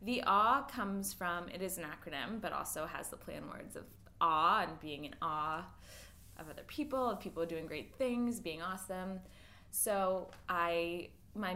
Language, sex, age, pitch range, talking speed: English, female, 20-39, 160-210 Hz, 170 wpm